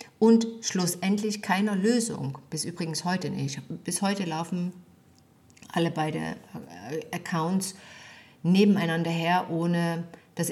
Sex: female